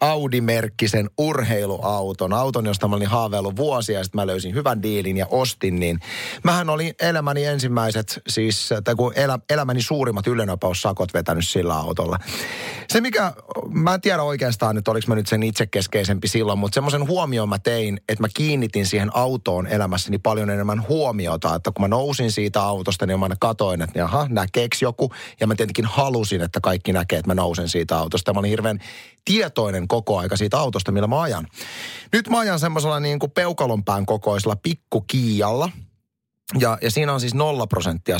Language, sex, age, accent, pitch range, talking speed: Finnish, male, 30-49, native, 100-125 Hz, 175 wpm